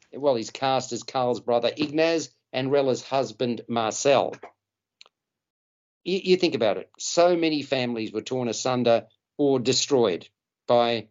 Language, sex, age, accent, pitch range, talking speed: English, male, 50-69, Australian, 120-145 Hz, 135 wpm